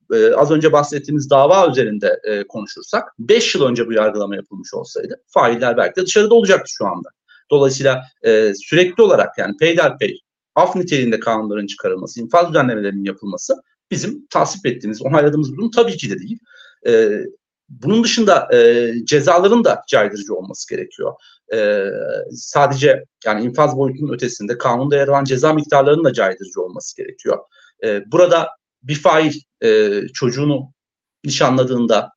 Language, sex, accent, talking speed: Turkish, male, native, 140 wpm